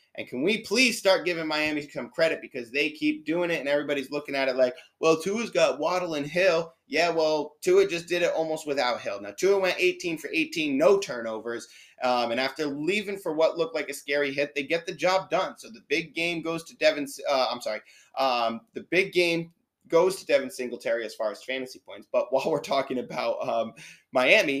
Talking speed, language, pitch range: 210 wpm, English, 130-170 Hz